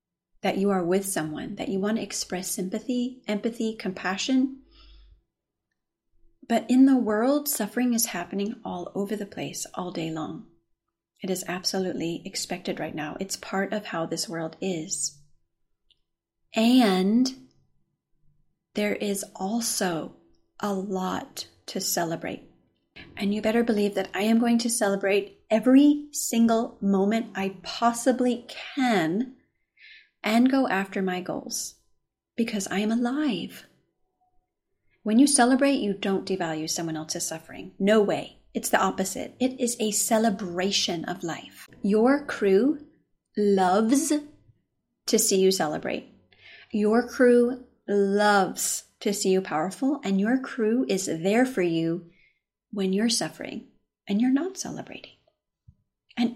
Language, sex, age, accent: English, female, 30-49, American